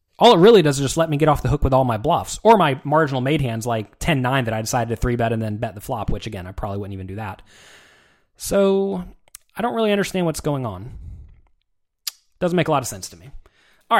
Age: 30-49